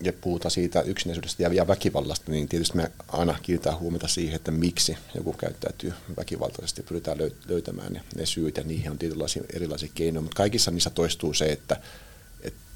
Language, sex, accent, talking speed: Finnish, male, native, 175 wpm